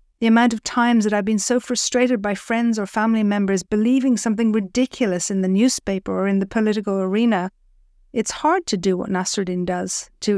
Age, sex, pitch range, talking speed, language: 50-69, female, 200-235 Hz, 190 wpm, English